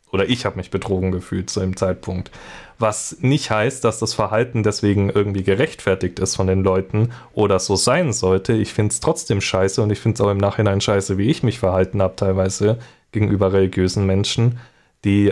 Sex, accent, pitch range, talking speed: male, German, 95-115 Hz, 190 wpm